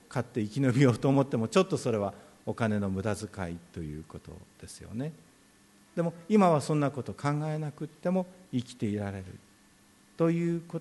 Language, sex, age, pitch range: Japanese, male, 50-69, 105-165 Hz